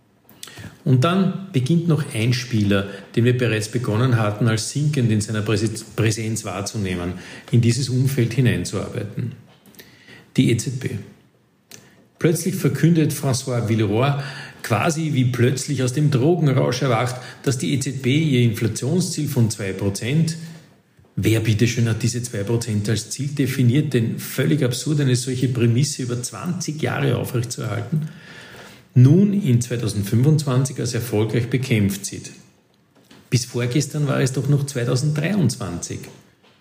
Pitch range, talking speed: 115-145 Hz, 125 wpm